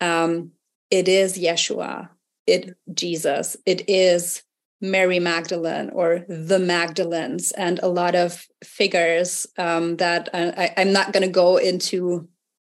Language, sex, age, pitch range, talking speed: English, female, 30-49, 175-195 Hz, 130 wpm